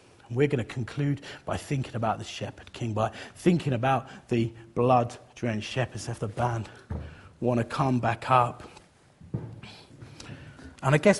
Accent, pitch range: British, 120-175 Hz